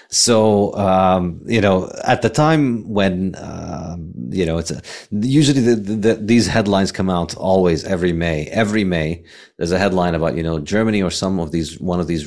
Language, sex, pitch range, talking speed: English, male, 80-100 Hz, 190 wpm